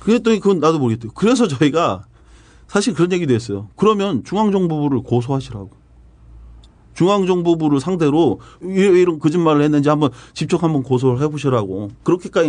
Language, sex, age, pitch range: Korean, male, 40-59, 120-170 Hz